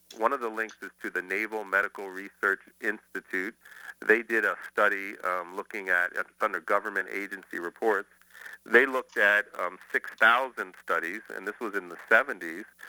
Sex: male